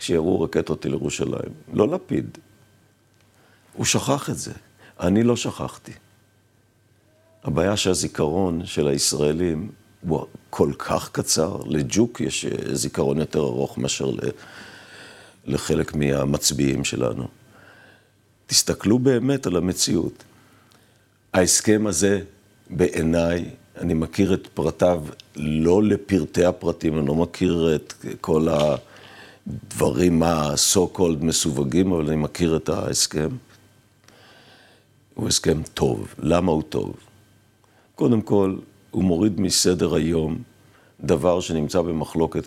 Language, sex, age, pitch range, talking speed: Hebrew, male, 50-69, 80-105 Hz, 105 wpm